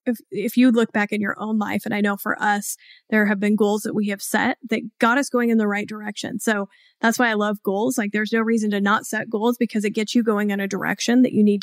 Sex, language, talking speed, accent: female, English, 285 wpm, American